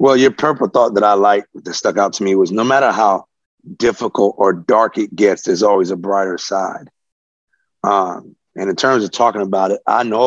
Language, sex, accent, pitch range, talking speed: English, male, American, 100-125 Hz, 210 wpm